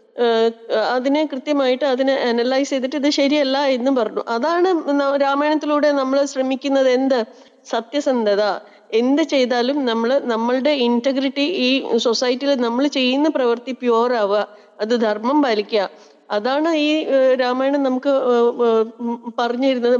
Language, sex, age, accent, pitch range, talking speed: Malayalam, female, 30-49, native, 235-290 Hz, 100 wpm